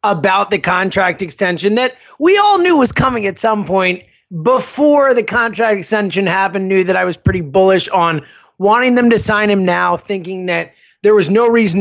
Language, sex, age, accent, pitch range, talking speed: English, male, 30-49, American, 205-275 Hz, 190 wpm